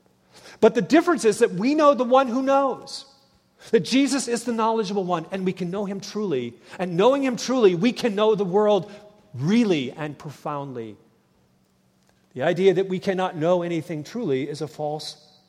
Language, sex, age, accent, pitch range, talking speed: English, male, 40-59, American, 135-195 Hz, 180 wpm